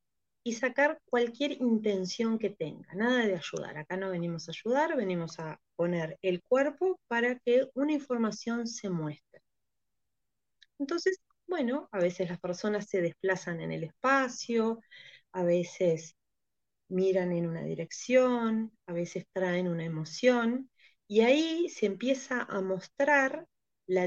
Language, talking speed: Spanish, 135 wpm